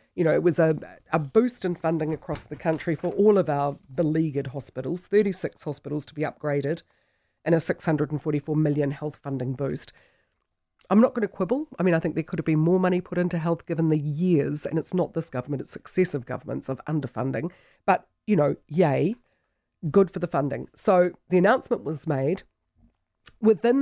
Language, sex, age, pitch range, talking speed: English, female, 40-59, 145-185 Hz, 190 wpm